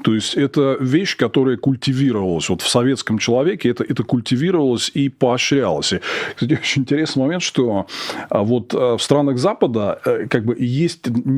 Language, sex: Russian, male